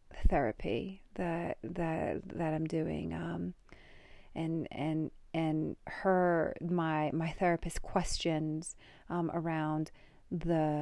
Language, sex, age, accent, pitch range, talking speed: English, female, 30-49, American, 155-175 Hz, 100 wpm